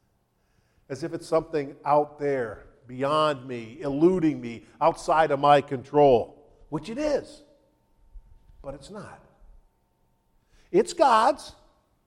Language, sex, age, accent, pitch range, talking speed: English, male, 50-69, American, 145-195 Hz, 110 wpm